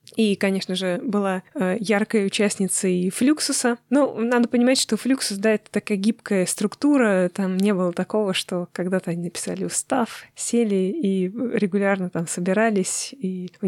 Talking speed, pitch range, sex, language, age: 150 wpm, 180-215 Hz, female, Russian, 20-39